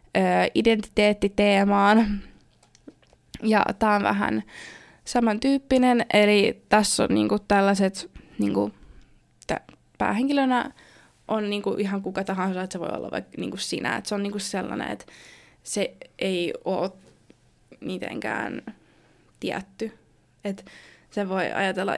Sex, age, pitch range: female, 20-39, 190-215 Hz